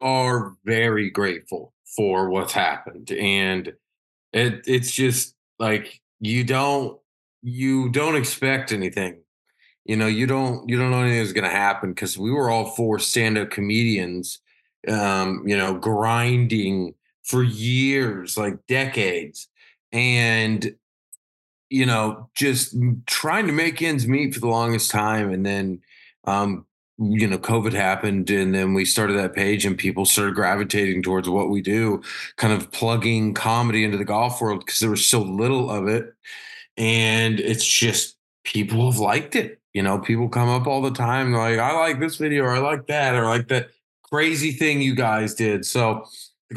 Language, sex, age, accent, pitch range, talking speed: English, male, 30-49, American, 105-130 Hz, 165 wpm